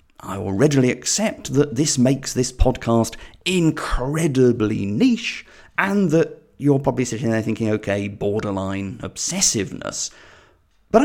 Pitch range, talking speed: 105-155 Hz, 120 wpm